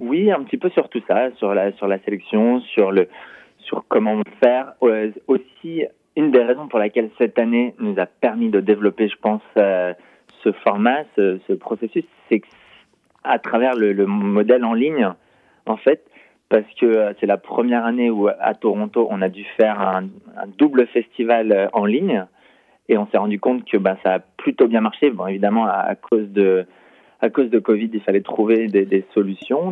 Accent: French